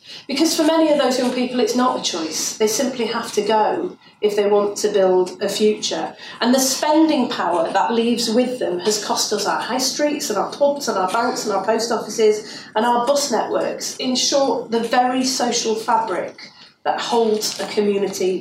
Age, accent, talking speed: 40-59, British, 200 wpm